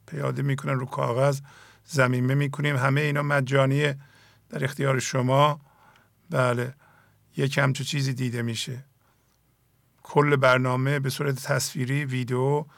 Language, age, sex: English, 50-69, male